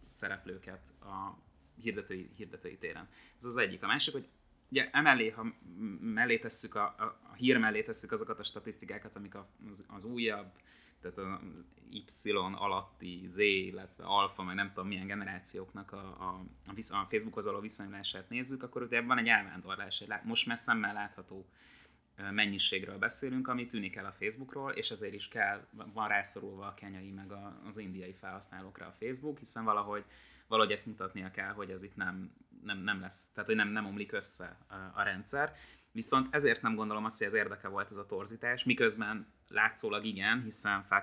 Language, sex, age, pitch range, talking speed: Hungarian, male, 20-39, 95-115 Hz, 170 wpm